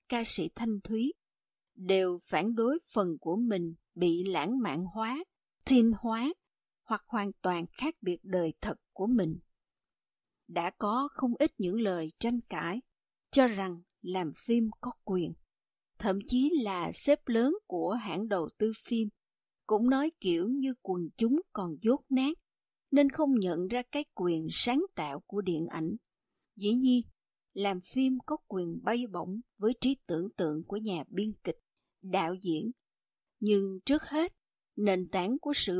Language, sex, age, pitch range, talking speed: Vietnamese, female, 50-69, 185-255 Hz, 160 wpm